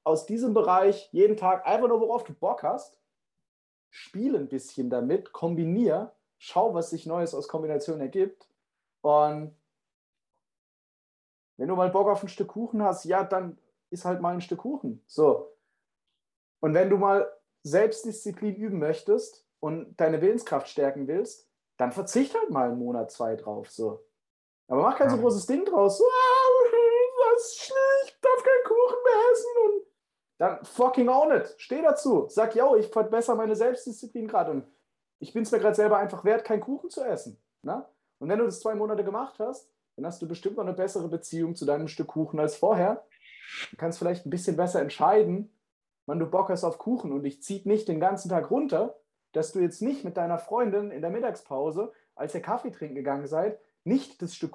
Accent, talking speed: German, 180 wpm